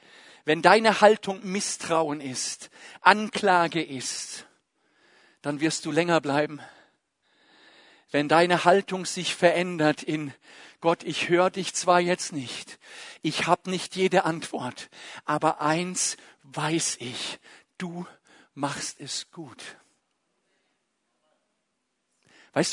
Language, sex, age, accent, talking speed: German, male, 50-69, German, 105 wpm